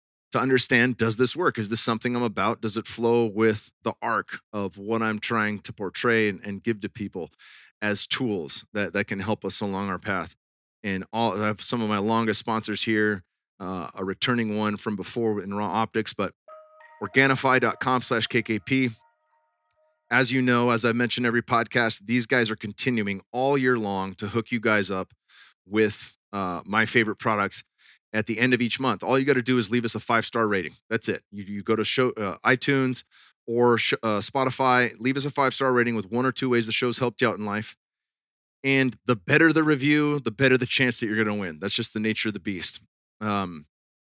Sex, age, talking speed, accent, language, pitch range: male, 30-49, 210 wpm, American, English, 105-125 Hz